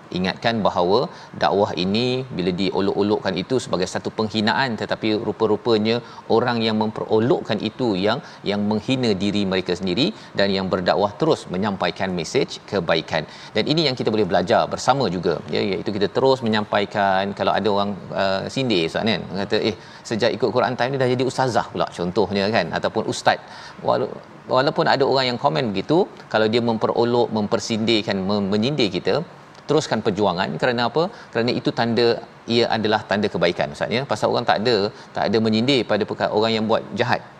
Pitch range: 105-125 Hz